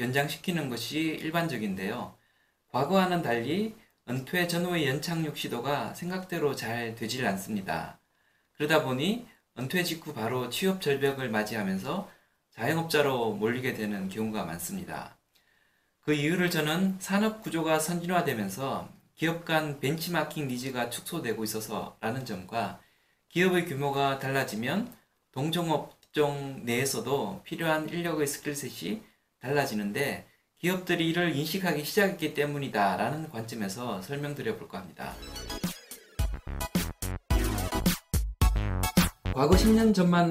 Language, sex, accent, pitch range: Korean, male, native, 120-165 Hz